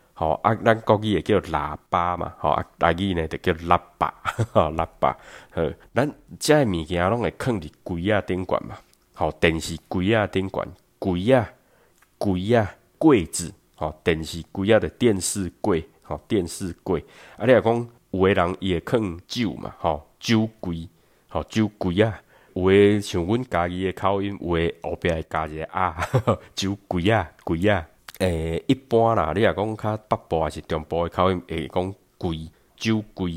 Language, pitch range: Chinese, 80-105 Hz